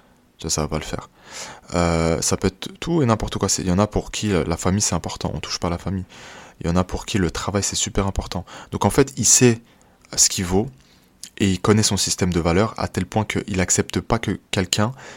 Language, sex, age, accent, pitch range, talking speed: French, male, 20-39, French, 85-100 Hz, 250 wpm